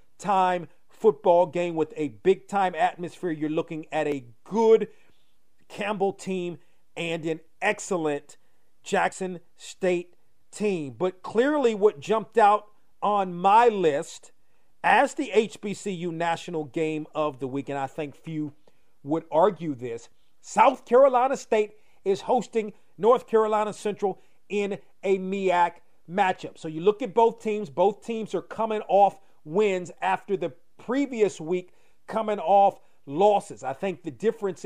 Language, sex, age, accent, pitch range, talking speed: English, male, 40-59, American, 170-205 Hz, 135 wpm